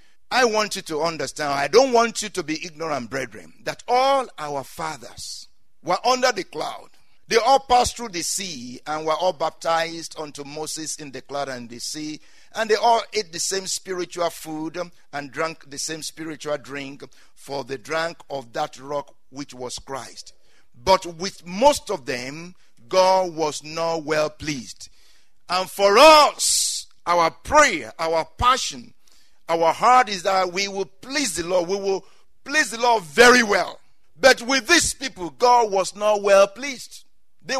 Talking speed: 170 wpm